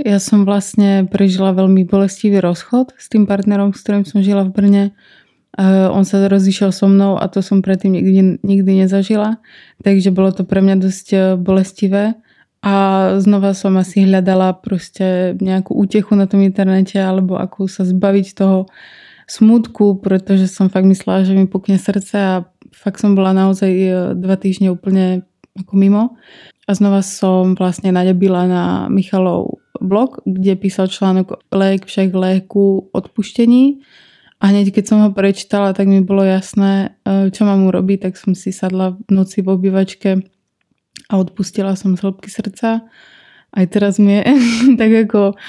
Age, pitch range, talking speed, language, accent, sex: 20-39, 190-205 Hz, 155 wpm, Czech, native, female